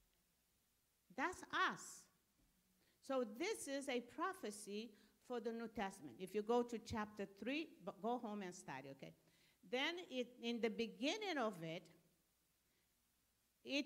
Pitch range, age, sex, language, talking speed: 210-290 Hz, 50-69, female, English, 125 wpm